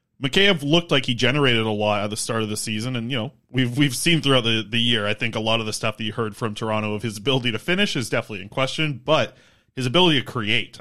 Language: English